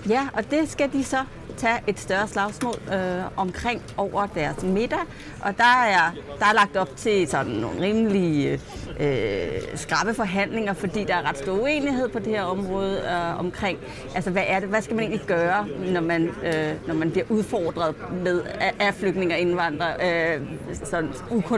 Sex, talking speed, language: female, 170 wpm, English